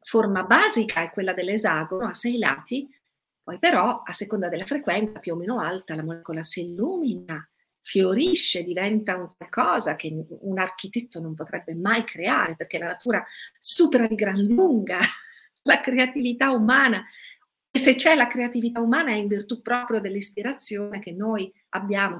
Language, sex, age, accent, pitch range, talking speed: Italian, female, 50-69, native, 180-235 Hz, 155 wpm